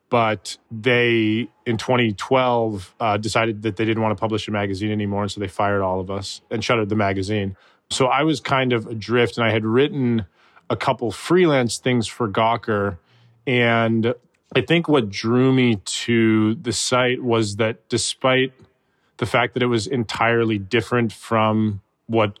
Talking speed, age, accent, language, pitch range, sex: 170 wpm, 20-39, American, English, 105-120 Hz, male